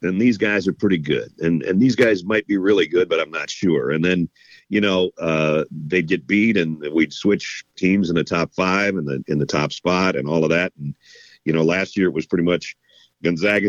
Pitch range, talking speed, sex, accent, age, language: 80-95 Hz, 235 wpm, male, American, 50-69, English